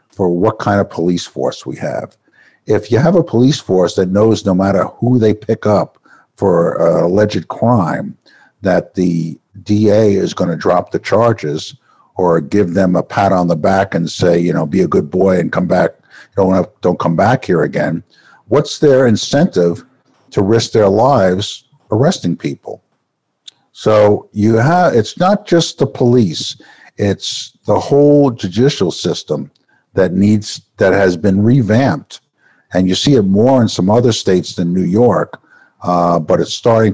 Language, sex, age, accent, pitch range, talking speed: English, male, 60-79, American, 95-120 Hz, 170 wpm